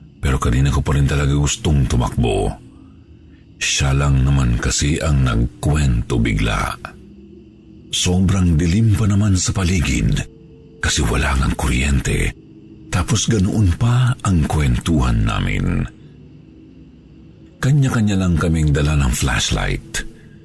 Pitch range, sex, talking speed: 75-115 Hz, male, 110 wpm